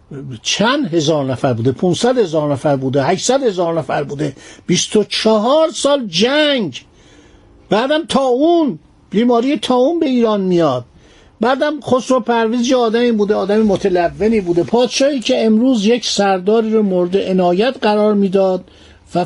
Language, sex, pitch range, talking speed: Persian, male, 170-240 Hz, 135 wpm